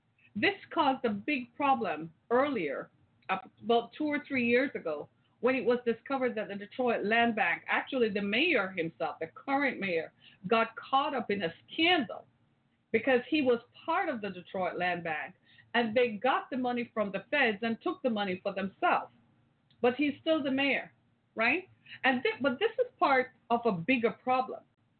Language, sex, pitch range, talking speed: English, female, 210-275 Hz, 175 wpm